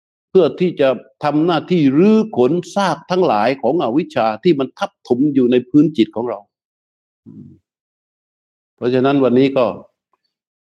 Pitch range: 100-130 Hz